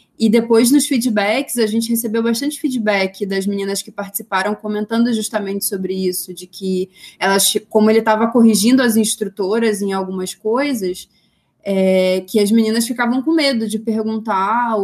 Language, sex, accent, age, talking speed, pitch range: Portuguese, female, Brazilian, 20-39, 155 wpm, 195-220 Hz